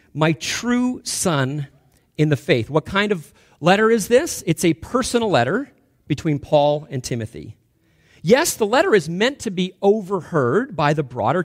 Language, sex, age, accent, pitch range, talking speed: English, male, 40-59, American, 145-205 Hz, 160 wpm